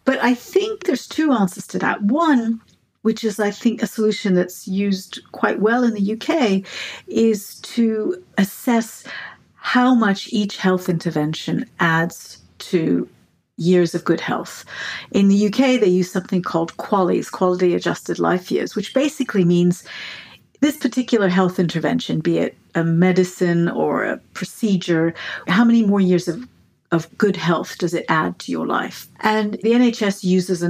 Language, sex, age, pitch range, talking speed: English, female, 50-69, 175-220 Hz, 160 wpm